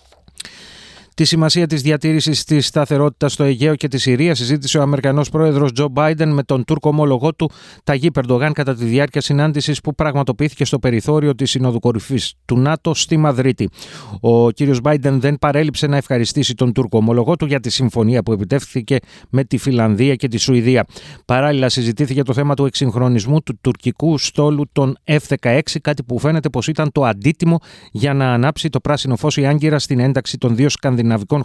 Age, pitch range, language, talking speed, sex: 30-49, 125-150 Hz, Greek, 175 wpm, male